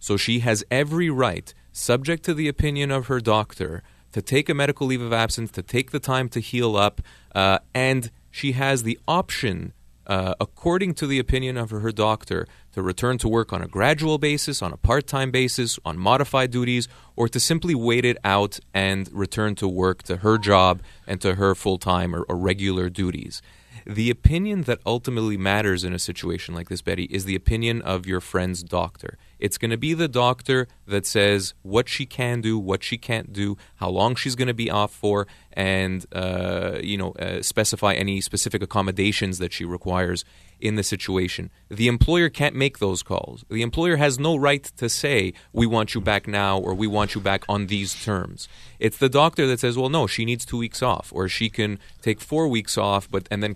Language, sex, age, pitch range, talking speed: English, male, 30-49, 95-125 Hz, 200 wpm